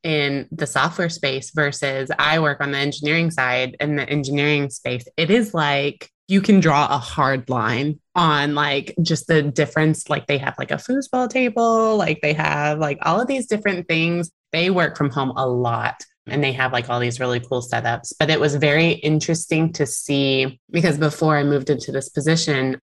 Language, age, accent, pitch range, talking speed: English, 20-39, American, 130-155 Hz, 195 wpm